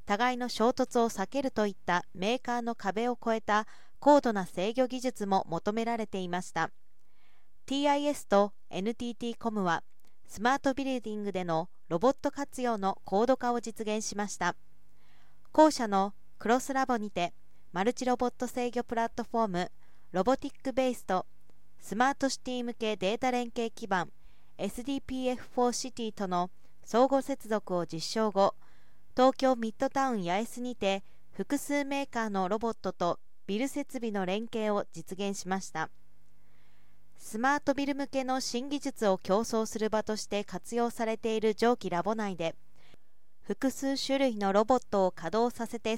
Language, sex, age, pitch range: Japanese, female, 40-59, 195-255 Hz